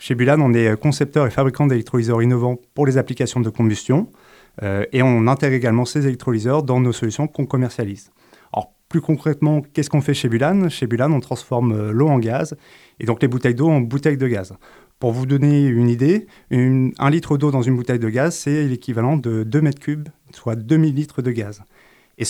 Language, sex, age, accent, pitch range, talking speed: French, male, 30-49, French, 115-145 Hz, 200 wpm